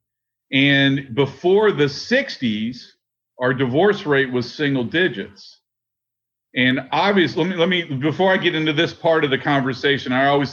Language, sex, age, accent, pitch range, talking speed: English, male, 50-69, American, 125-155 Hz, 150 wpm